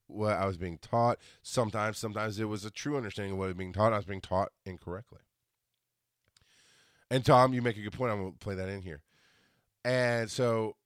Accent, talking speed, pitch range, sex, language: American, 215 wpm, 95-125 Hz, male, English